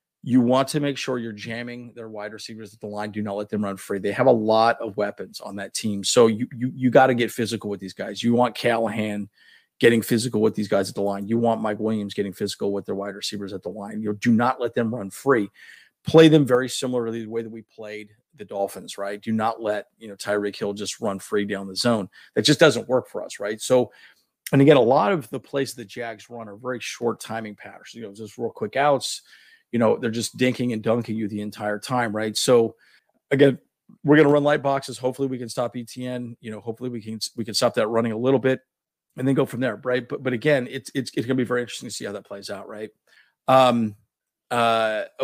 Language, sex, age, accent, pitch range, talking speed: English, male, 40-59, American, 105-125 Hz, 250 wpm